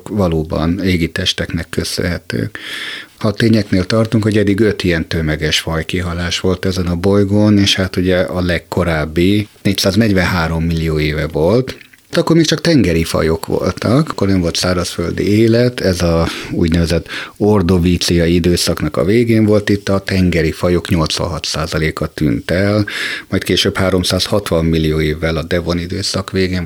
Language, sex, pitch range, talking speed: Hungarian, male, 85-105 Hz, 140 wpm